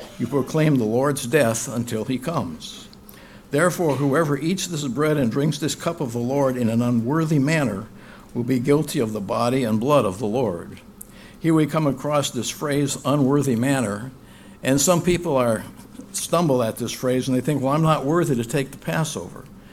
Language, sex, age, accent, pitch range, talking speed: English, male, 60-79, American, 120-150 Hz, 190 wpm